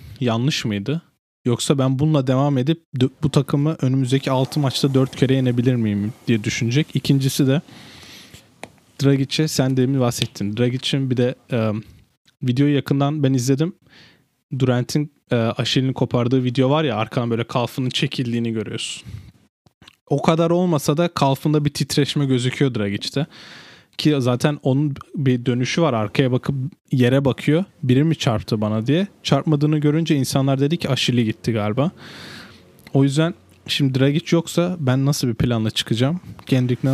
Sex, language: male, Turkish